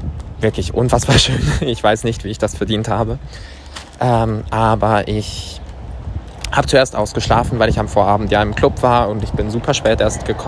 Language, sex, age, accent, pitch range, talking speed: German, male, 20-39, German, 105-120 Hz, 180 wpm